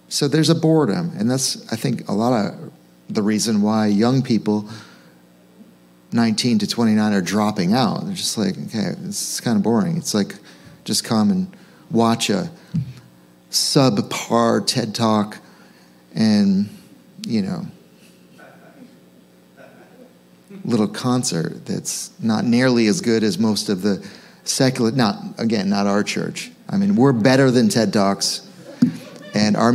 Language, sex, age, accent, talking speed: English, male, 40-59, American, 140 wpm